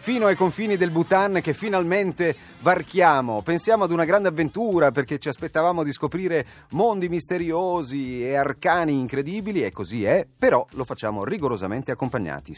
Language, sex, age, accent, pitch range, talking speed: Italian, male, 40-59, native, 115-170 Hz, 150 wpm